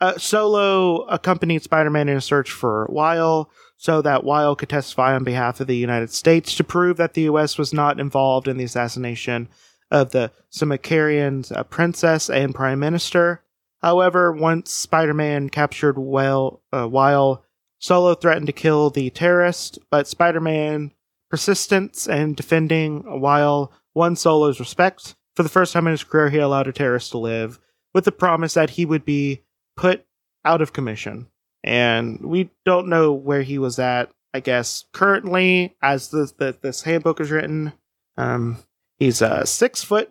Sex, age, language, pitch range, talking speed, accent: male, 30-49, English, 135-170 Hz, 160 wpm, American